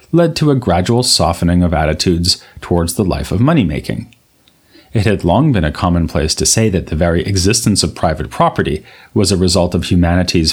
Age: 30-49